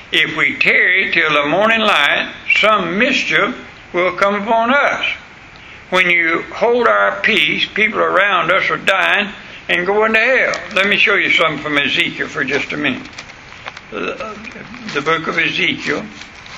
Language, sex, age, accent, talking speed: English, male, 60-79, American, 150 wpm